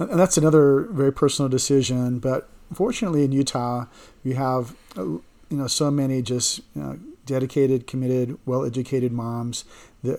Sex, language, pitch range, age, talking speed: male, English, 125-140 Hz, 40-59, 140 wpm